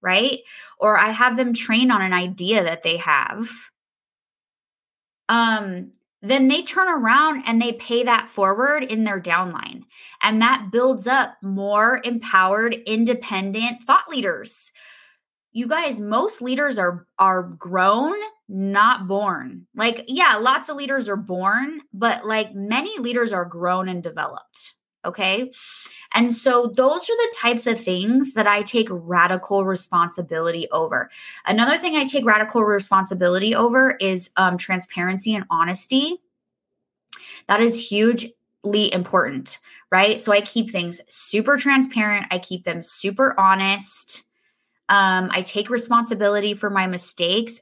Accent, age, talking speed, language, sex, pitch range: American, 20-39, 135 wpm, English, female, 185-250 Hz